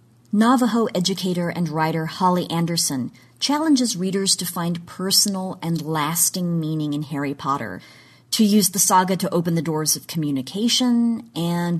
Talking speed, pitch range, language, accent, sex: 140 wpm, 150-195 Hz, English, American, female